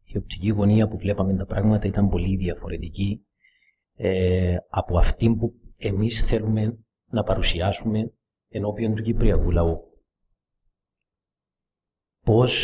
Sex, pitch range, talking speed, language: male, 90-110 Hz, 110 wpm, Greek